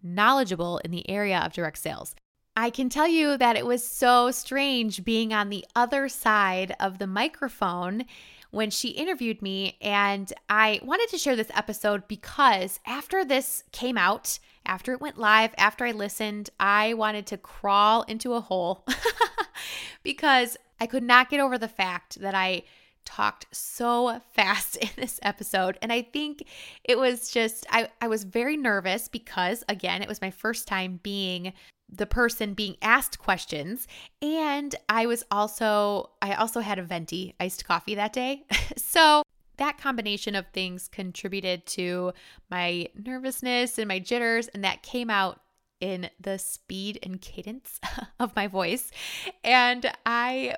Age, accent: 20-39, American